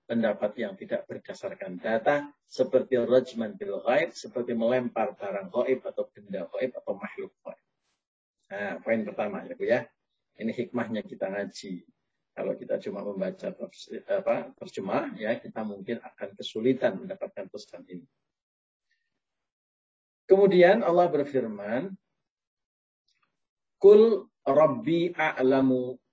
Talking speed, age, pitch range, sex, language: 115 wpm, 40-59, 115-145 Hz, male, Indonesian